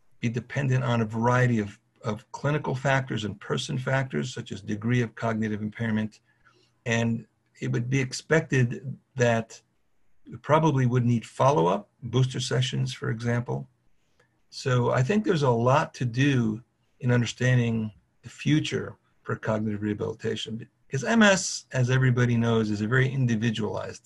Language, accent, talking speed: English, American, 140 wpm